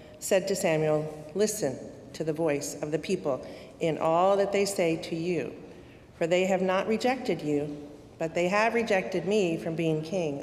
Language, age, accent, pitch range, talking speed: English, 50-69, American, 155-200 Hz, 180 wpm